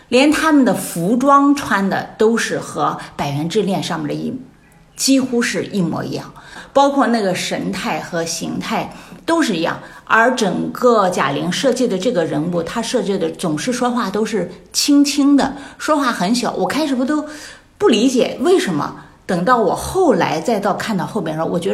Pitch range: 180-270 Hz